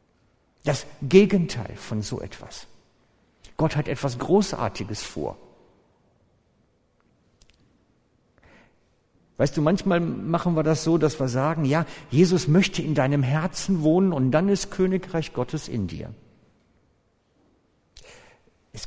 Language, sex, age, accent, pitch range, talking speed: German, male, 60-79, German, 125-170 Hz, 110 wpm